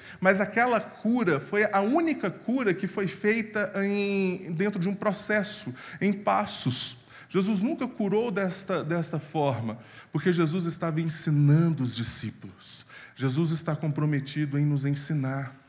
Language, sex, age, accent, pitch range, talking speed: Portuguese, male, 20-39, Brazilian, 145-195 Hz, 130 wpm